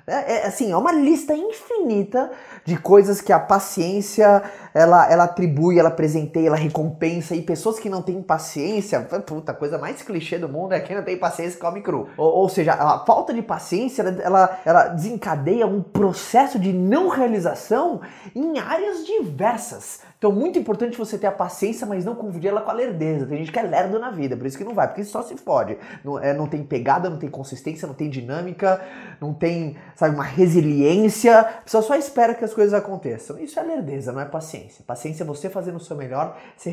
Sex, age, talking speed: male, 20-39, 205 wpm